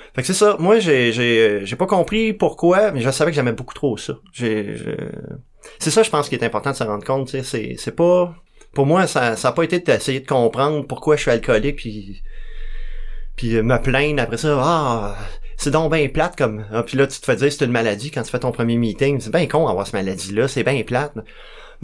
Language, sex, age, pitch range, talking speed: French, male, 30-49, 115-150 Hz, 245 wpm